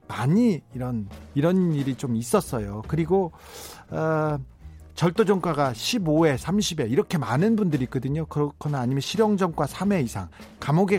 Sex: male